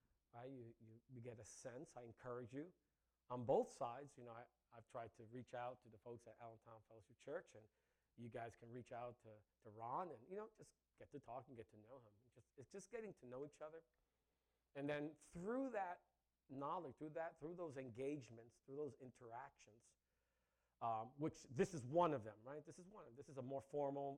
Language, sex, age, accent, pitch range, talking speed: English, male, 40-59, American, 130-180 Hz, 220 wpm